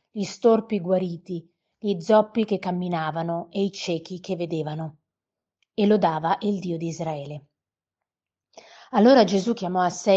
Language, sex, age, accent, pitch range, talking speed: Italian, female, 30-49, native, 170-205 Hz, 135 wpm